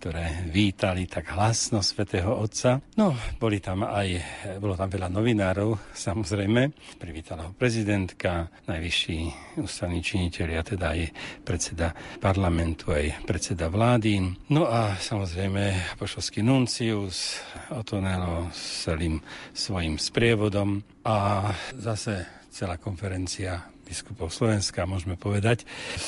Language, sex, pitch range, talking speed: Slovak, male, 90-110 Hz, 110 wpm